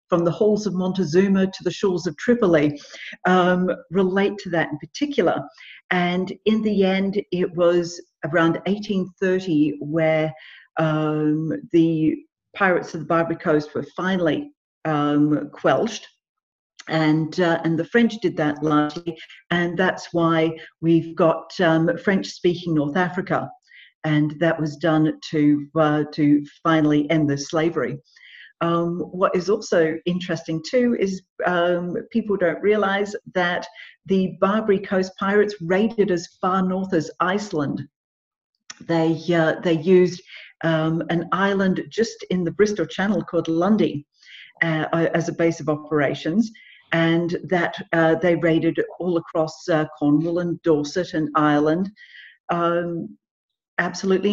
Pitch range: 160-190 Hz